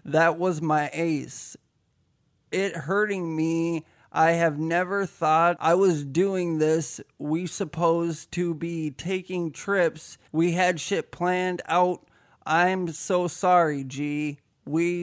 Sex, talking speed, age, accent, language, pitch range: male, 125 wpm, 20-39, American, English, 150-185 Hz